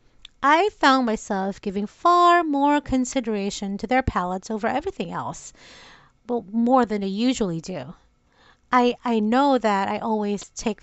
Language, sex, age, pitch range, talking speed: English, female, 30-49, 215-280 Hz, 145 wpm